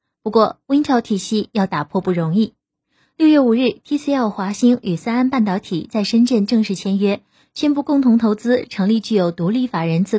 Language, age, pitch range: Chinese, 20-39, 190-250 Hz